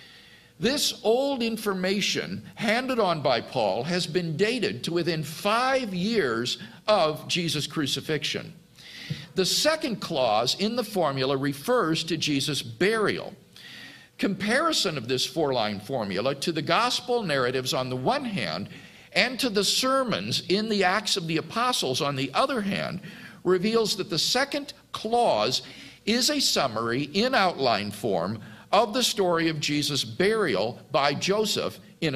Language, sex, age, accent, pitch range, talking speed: English, male, 50-69, American, 150-220 Hz, 140 wpm